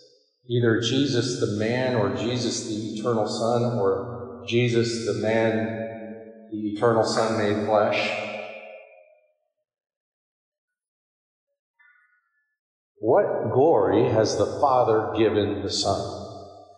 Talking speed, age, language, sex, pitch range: 95 wpm, 50-69, English, male, 105-145 Hz